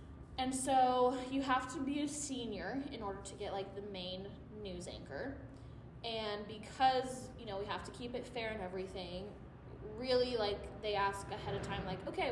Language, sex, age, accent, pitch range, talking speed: English, female, 20-39, American, 215-275 Hz, 185 wpm